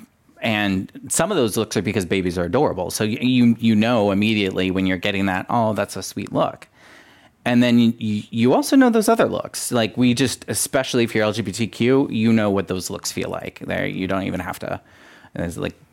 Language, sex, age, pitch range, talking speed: English, male, 30-49, 95-110 Hz, 210 wpm